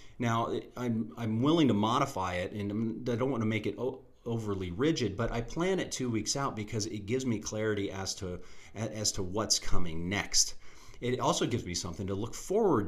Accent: American